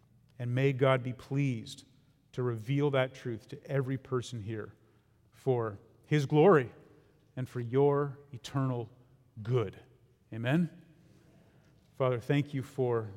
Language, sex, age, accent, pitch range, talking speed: English, male, 40-59, American, 120-140 Hz, 120 wpm